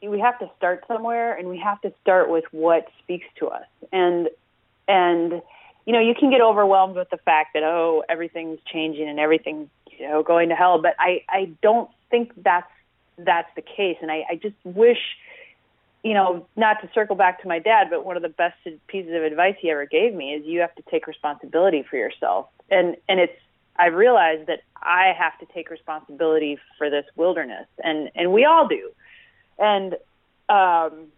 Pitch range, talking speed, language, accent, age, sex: 160-200 Hz, 195 wpm, English, American, 30-49, female